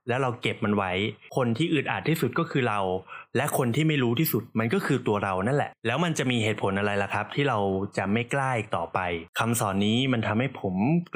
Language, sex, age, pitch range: Thai, male, 20-39, 105-140 Hz